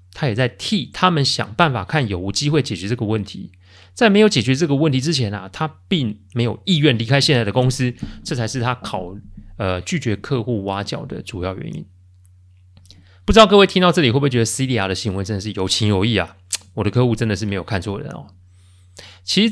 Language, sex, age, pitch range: Chinese, male, 30-49, 95-140 Hz